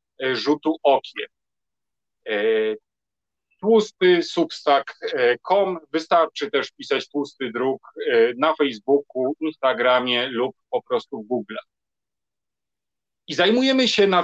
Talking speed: 90 wpm